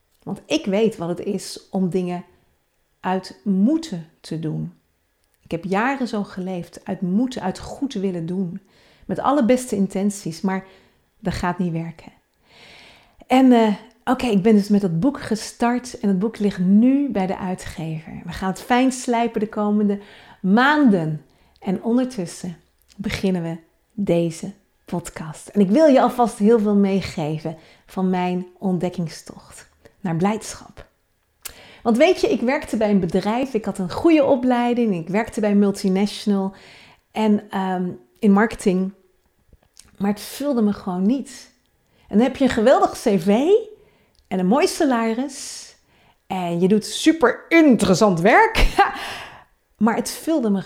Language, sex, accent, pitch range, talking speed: Dutch, female, Dutch, 185-235 Hz, 150 wpm